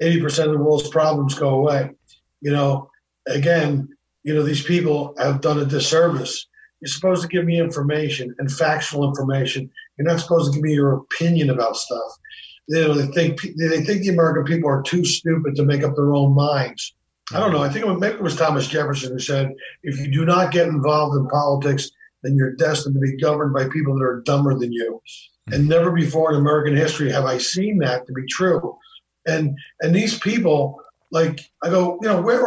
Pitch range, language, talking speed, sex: 140-170 Hz, English, 200 wpm, male